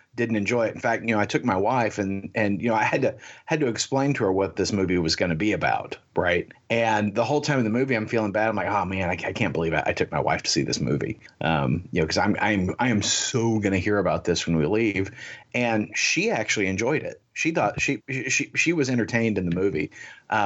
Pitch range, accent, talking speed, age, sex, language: 100-120 Hz, American, 265 wpm, 40-59, male, English